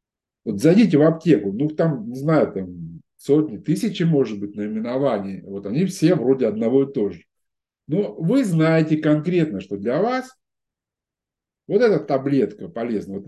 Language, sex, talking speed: Russian, male, 155 wpm